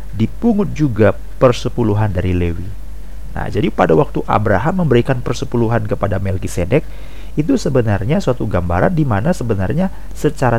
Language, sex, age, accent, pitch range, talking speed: Indonesian, male, 40-59, native, 105-150 Hz, 125 wpm